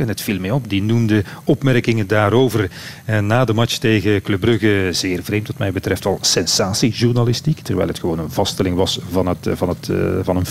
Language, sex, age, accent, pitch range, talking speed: Dutch, male, 40-59, Dutch, 110-140 Hz, 200 wpm